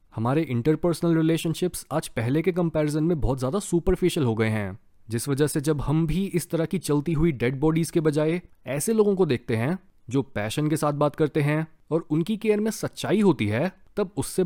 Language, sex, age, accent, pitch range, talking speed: Hindi, male, 20-39, native, 125-170 Hz, 210 wpm